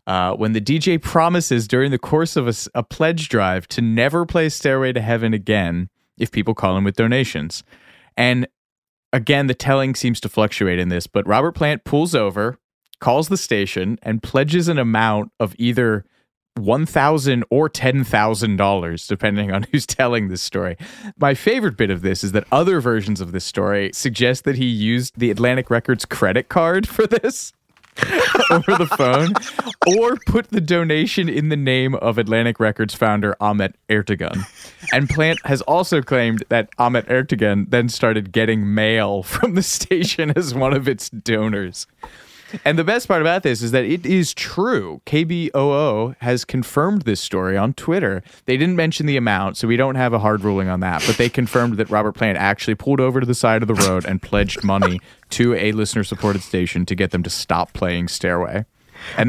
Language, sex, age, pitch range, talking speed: English, male, 30-49, 100-135 Hz, 180 wpm